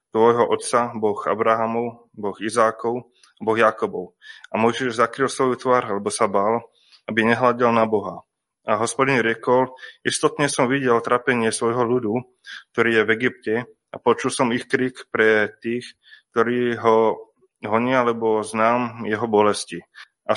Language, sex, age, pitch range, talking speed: Slovak, male, 20-39, 115-125 Hz, 145 wpm